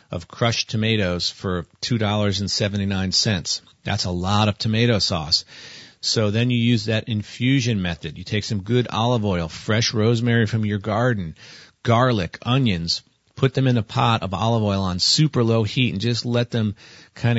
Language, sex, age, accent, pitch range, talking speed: English, male, 40-59, American, 105-120 Hz, 165 wpm